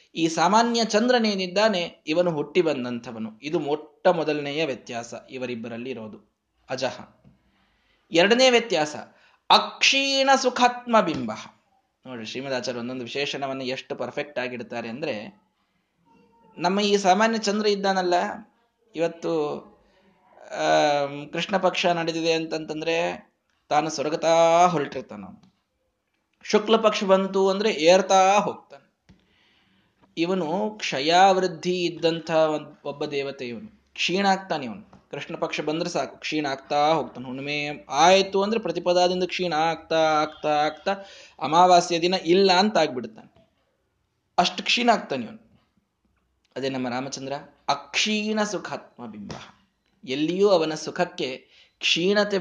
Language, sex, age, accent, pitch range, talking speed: Kannada, male, 20-39, native, 140-195 Hz, 95 wpm